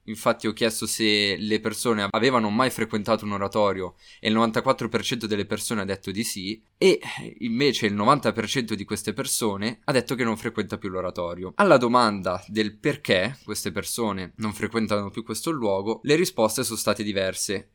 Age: 20-39